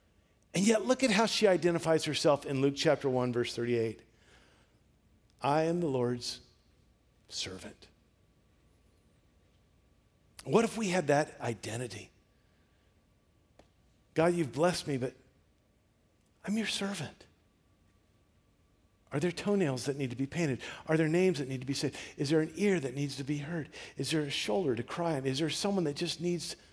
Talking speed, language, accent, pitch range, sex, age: 160 wpm, English, American, 105-165 Hz, male, 50-69